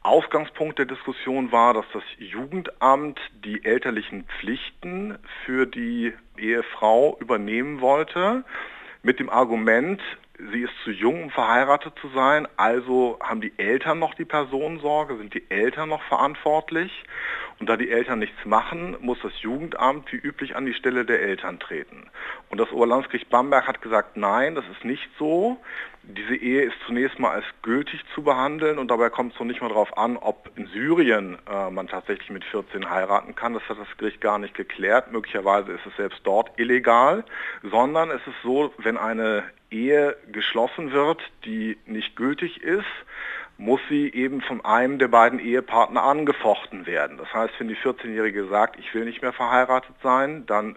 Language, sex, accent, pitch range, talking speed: German, male, German, 115-150 Hz, 170 wpm